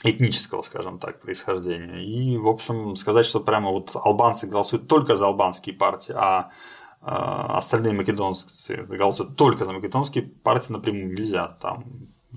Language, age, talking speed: Russian, 20-39, 130 wpm